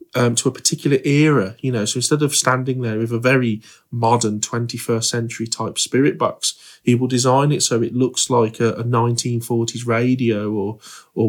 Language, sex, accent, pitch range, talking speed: English, male, British, 115-130 Hz, 185 wpm